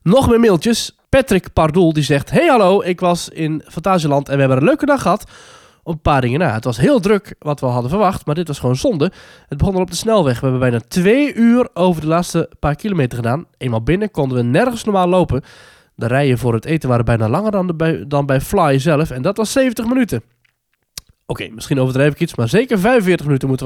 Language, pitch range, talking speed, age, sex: Dutch, 130-185 Hz, 235 wpm, 20-39, male